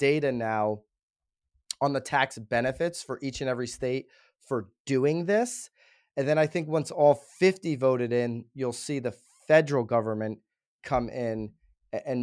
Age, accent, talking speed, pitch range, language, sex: 30-49, American, 150 wpm, 120-155 Hz, English, male